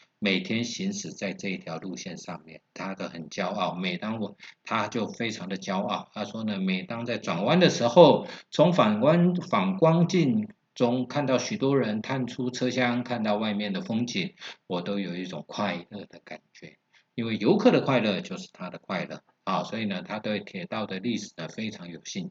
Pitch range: 115-190 Hz